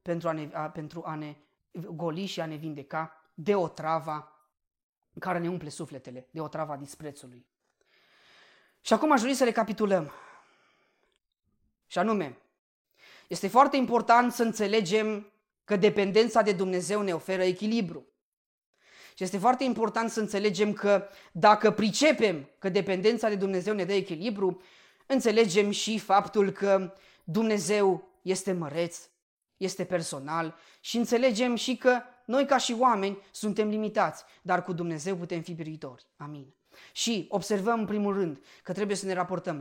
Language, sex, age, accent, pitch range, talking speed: Romanian, female, 20-39, native, 175-215 Hz, 145 wpm